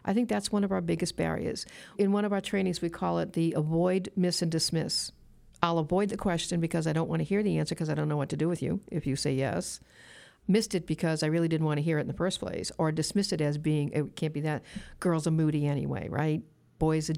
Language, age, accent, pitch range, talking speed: English, 50-69, American, 155-185 Hz, 265 wpm